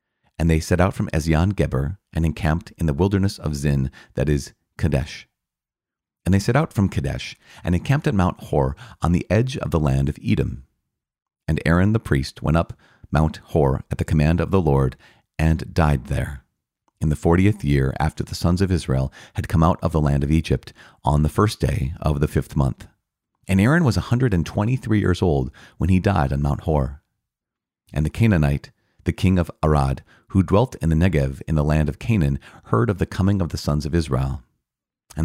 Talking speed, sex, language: 200 wpm, male, English